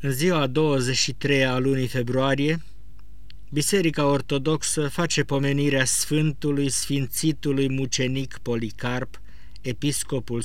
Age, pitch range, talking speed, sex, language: 50-69, 110-150 Hz, 80 wpm, male, Romanian